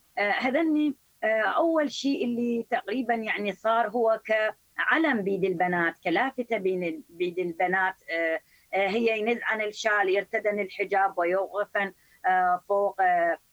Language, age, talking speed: Arabic, 30-49, 100 wpm